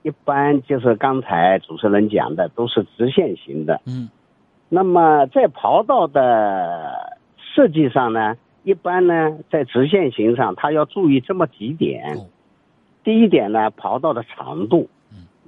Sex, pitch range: male, 120-195 Hz